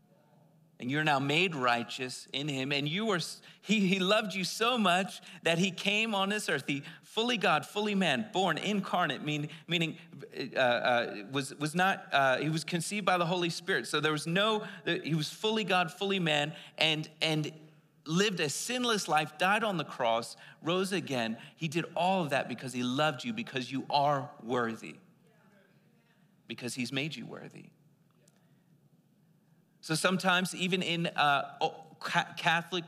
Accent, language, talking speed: American, English, 165 wpm